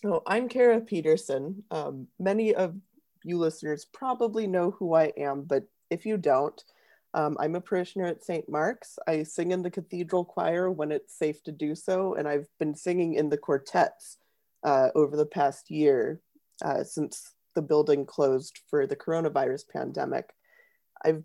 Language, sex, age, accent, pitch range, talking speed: English, female, 30-49, American, 145-195 Hz, 165 wpm